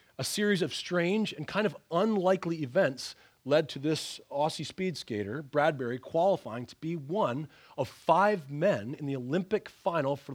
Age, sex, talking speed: 30-49, male, 160 wpm